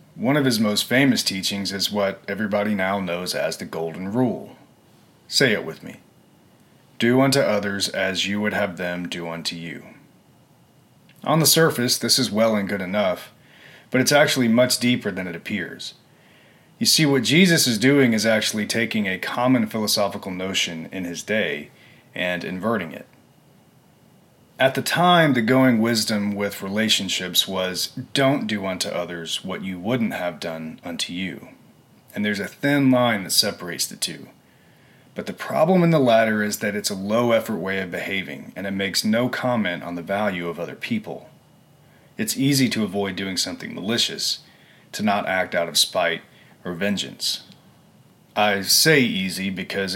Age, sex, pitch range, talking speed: 30-49, male, 95-125 Hz, 165 wpm